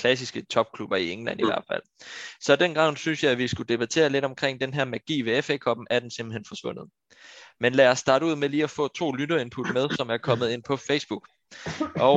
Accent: native